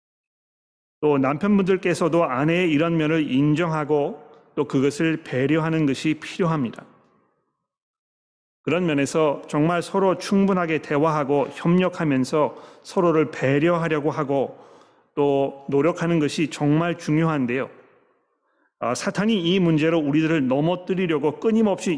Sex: male